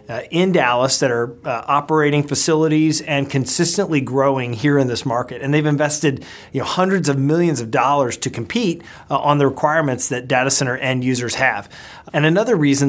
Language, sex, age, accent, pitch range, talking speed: English, male, 30-49, American, 125-150 Hz, 175 wpm